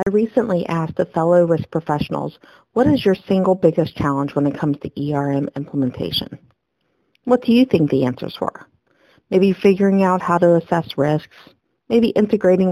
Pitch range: 150-190 Hz